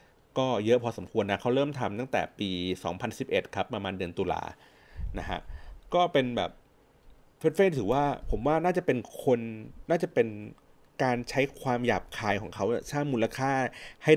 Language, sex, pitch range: Thai, male, 100-130 Hz